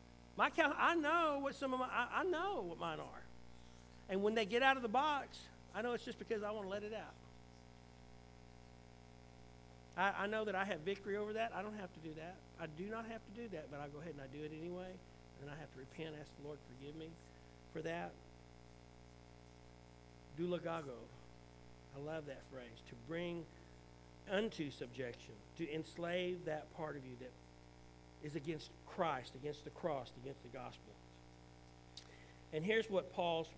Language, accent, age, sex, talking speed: English, American, 50-69, male, 190 wpm